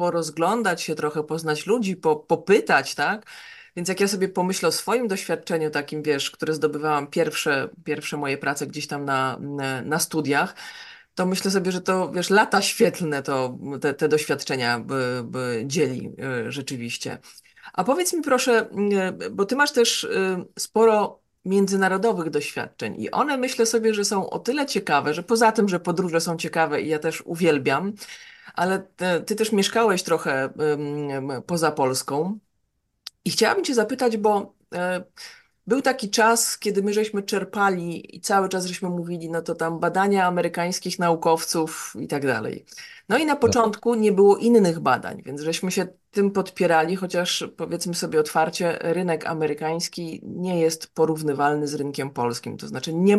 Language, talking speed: Polish, 155 wpm